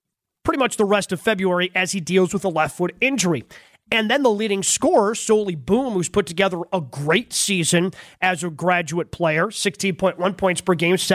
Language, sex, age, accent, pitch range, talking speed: English, male, 30-49, American, 180-210 Hz, 190 wpm